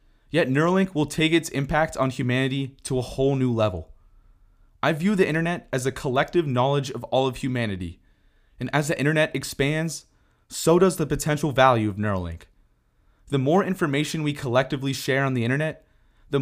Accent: American